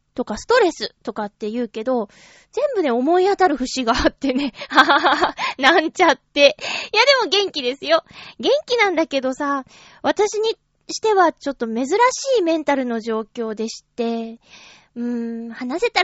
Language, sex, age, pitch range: Japanese, female, 20-39, 220-340 Hz